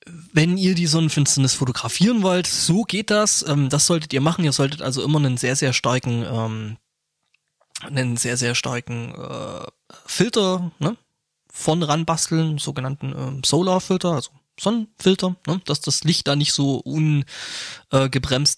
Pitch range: 135-165 Hz